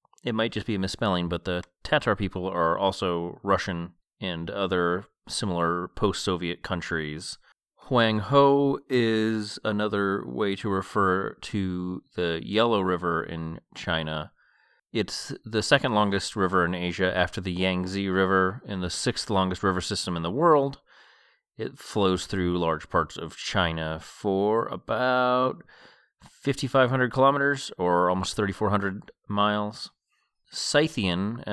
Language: English